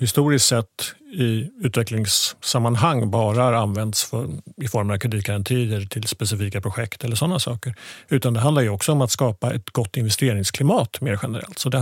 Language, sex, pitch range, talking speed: Swedish, male, 115-135 Hz, 155 wpm